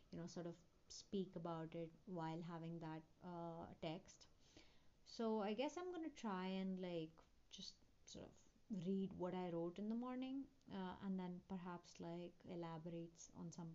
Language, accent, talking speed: English, Indian, 165 wpm